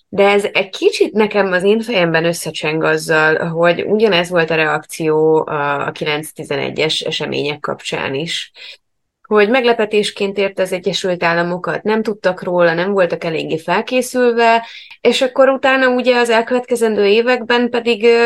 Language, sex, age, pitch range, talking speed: Hungarian, female, 20-39, 155-205 Hz, 135 wpm